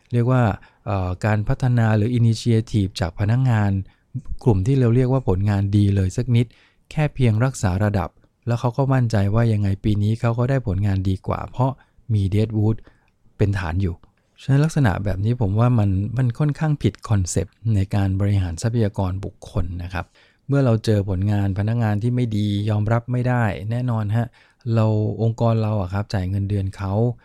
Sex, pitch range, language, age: male, 95-120 Hz, English, 20-39